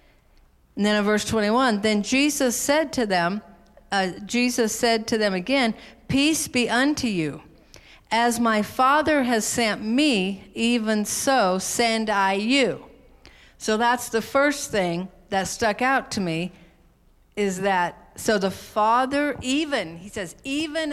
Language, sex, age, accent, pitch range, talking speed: English, female, 50-69, American, 185-245 Hz, 145 wpm